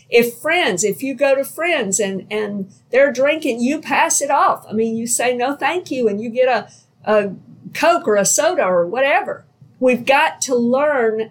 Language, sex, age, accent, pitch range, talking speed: English, female, 50-69, American, 200-270 Hz, 195 wpm